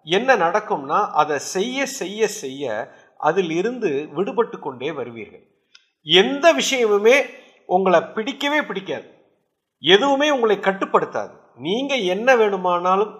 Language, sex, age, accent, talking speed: English, male, 50-69, Indian, 95 wpm